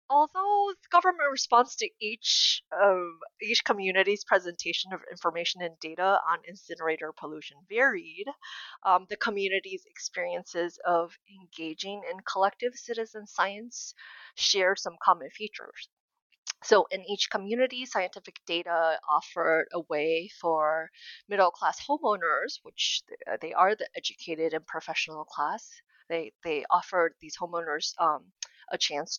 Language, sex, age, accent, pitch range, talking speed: English, female, 20-39, American, 170-245 Hz, 125 wpm